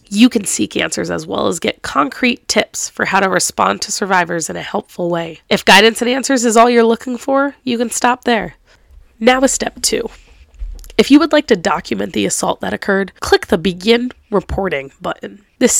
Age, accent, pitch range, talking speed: 20-39, American, 190-245 Hz, 200 wpm